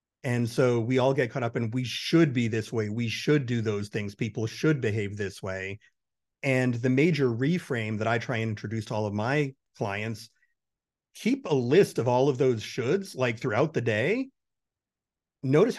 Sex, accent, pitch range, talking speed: male, American, 115-150 Hz, 190 wpm